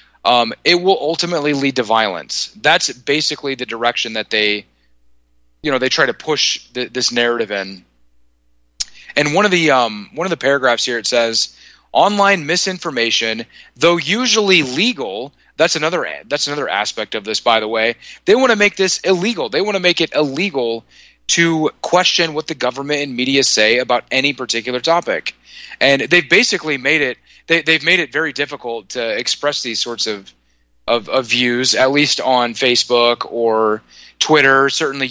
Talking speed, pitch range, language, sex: 170 wpm, 120-155 Hz, English, male